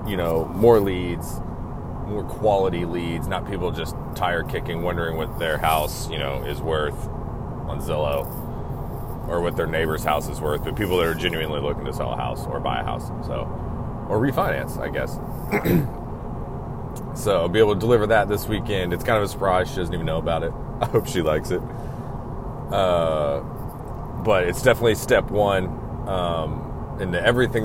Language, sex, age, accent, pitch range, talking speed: English, male, 30-49, American, 85-120 Hz, 180 wpm